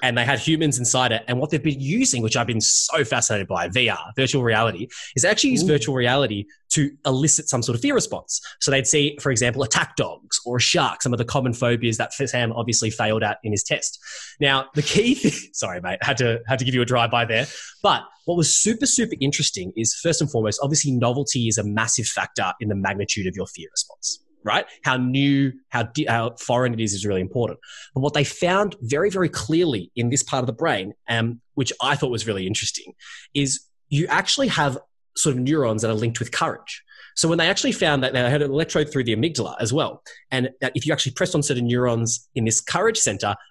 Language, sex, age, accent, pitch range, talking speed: English, male, 20-39, Australian, 115-145 Hz, 230 wpm